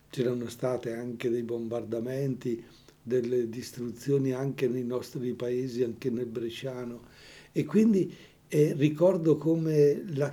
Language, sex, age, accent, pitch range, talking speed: Italian, male, 60-79, native, 125-150 Hz, 115 wpm